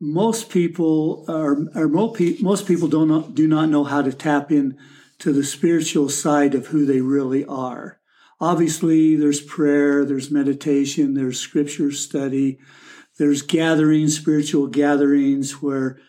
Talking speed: 140 wpm